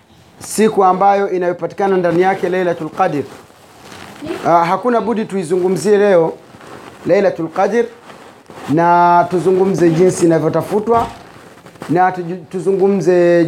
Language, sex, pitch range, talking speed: Swahili, male, 175-205 Hz, 85 wpm